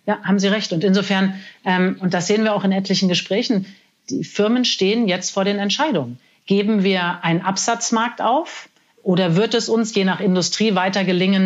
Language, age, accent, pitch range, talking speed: German, 40-59, German, 175-210 Hz, 190 wpm